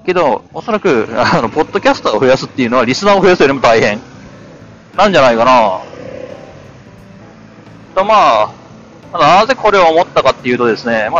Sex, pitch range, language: male, 125-180 Hz, Japanese